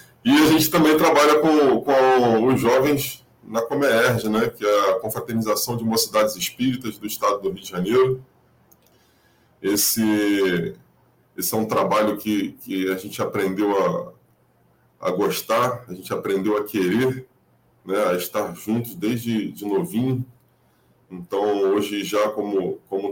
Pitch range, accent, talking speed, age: 100-130 Hz, Brazilian, 145 wpm, 20-39